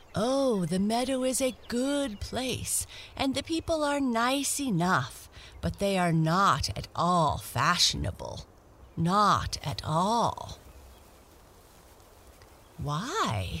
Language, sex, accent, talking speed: English, female, American, 105 wpm